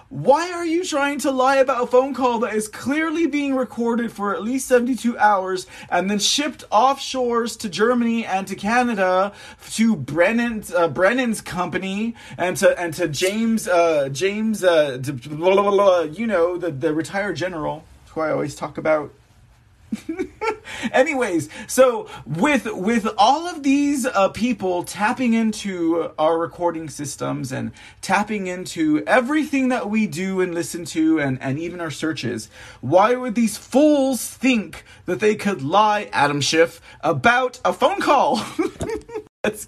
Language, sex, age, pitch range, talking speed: English, male, 20-39, 160-245 Hz, 150 wpm